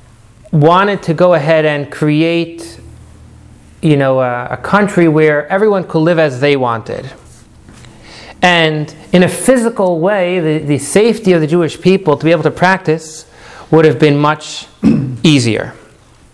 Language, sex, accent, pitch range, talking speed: English, male, American, 145-180 Hz, 145 wpm